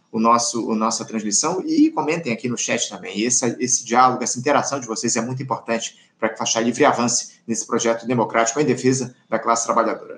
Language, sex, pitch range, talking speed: Portuguese, male, 125-180 Hz, 205 wpm